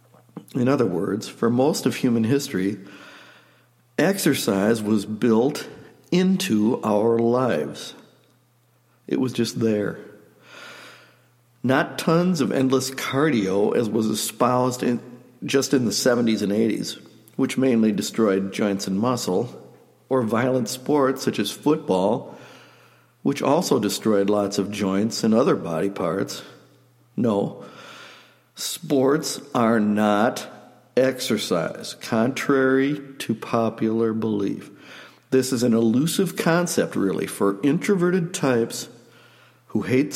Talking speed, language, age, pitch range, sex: 110 wpm, English, 60-79, 110-140 Hz, male